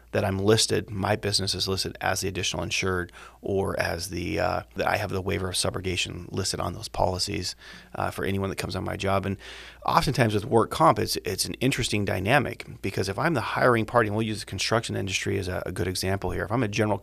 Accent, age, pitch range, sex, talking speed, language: American, 30-49, 95-115 Hz, male, 235 wpm, English